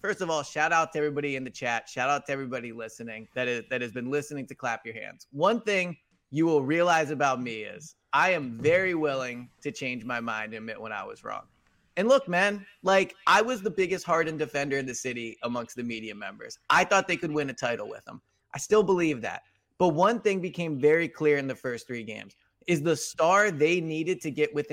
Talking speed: 230 wpm